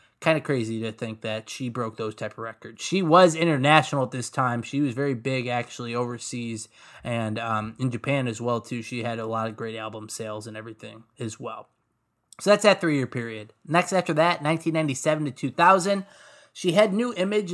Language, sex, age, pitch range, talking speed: English, male, 20-39, 120-160 Hz, 200 wpm